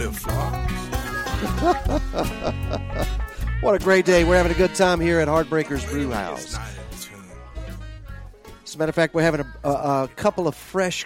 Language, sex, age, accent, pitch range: English, male, 40-59, American, 110-175 Hz